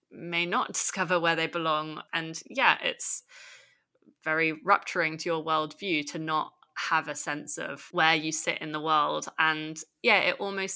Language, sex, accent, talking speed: English, female, British, 165 wpm